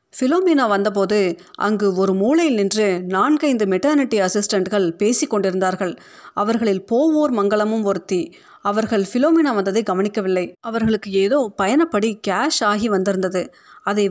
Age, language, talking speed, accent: 30-49, Tamil, 110 wpm, native